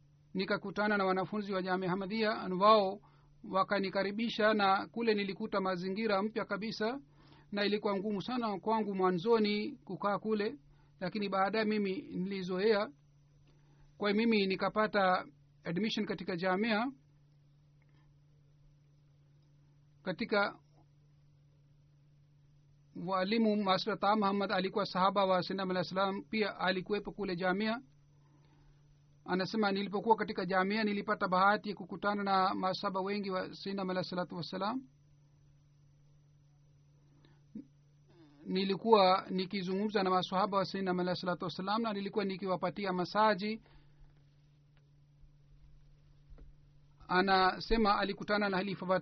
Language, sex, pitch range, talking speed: Swahili, male, 145-205 Hz, 100 wpm